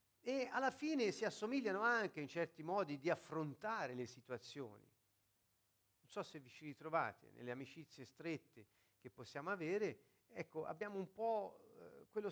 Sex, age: male, 50-69